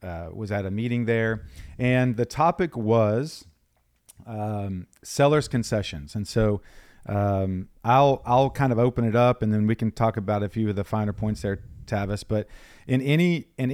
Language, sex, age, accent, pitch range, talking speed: English, male, 40-59, American, 100-125 Hz, 180 wpm